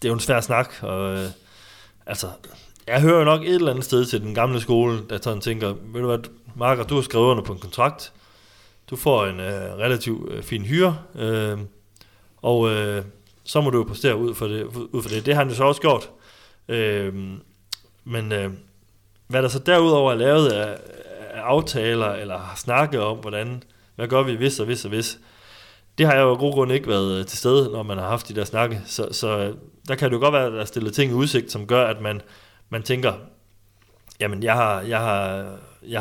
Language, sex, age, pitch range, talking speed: Danish, male, 30-49, 100-125 Hz, 220 wpm